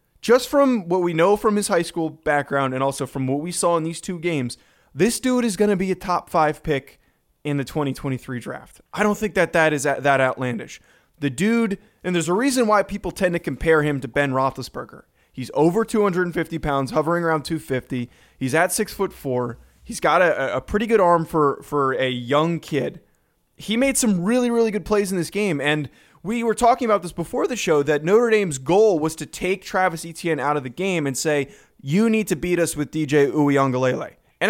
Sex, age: male, 20-39